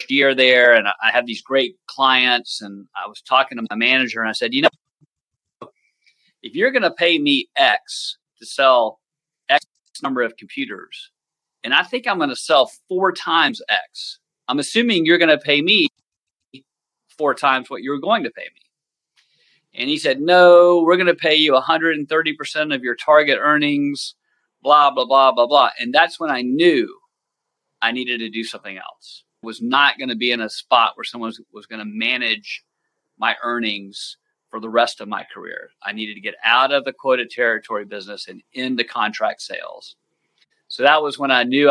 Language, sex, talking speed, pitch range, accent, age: English, male, 190 wpm, 115-150 Hz, American, 40-59